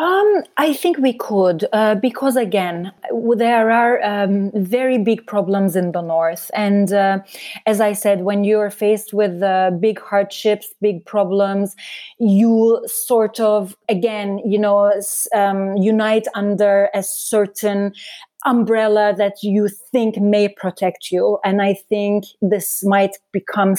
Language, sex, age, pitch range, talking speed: English, female, 30-49, 190-225 Hz, 140 wpm